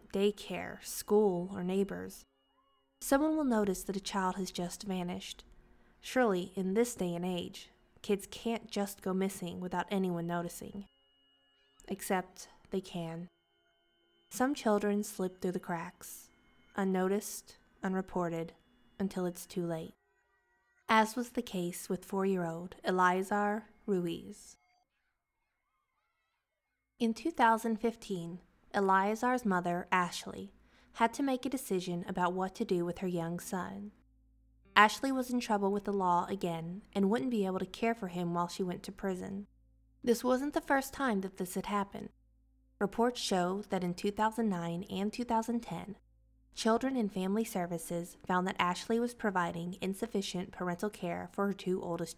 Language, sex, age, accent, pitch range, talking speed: English, female, 20-39, American, 175-215 Hz, 140 wpm